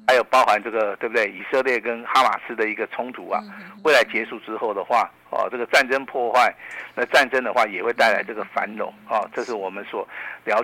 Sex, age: male, 50-69